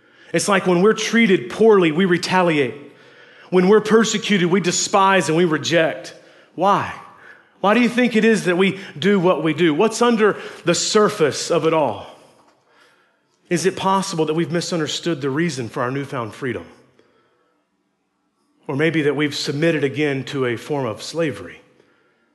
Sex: male